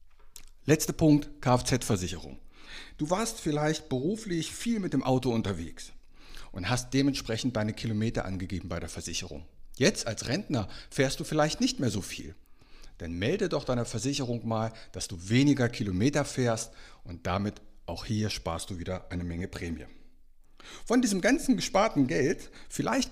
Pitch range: 95-145 Hz